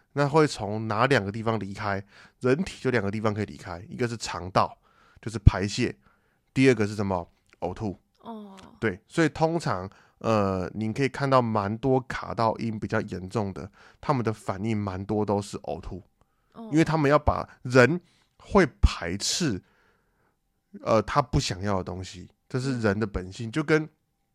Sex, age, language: male, 20-39, Chinese